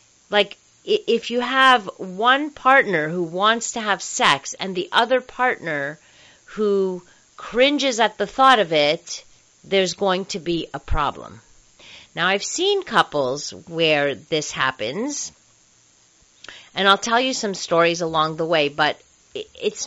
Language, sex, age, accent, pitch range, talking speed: English, female, 40-59, American, 155-220 Hz, 140 wpm